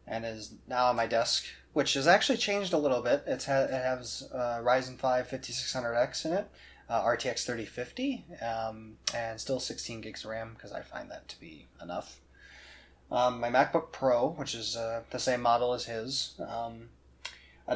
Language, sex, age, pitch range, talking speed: English, male, 20-39, 110-130 Hz, 185 wpm